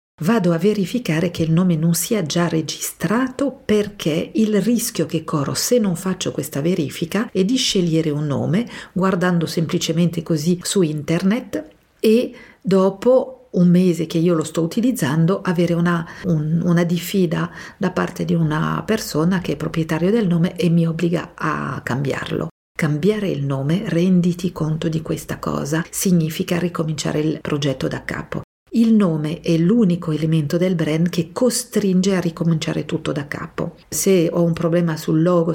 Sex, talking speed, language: female, 155 wpm, Italian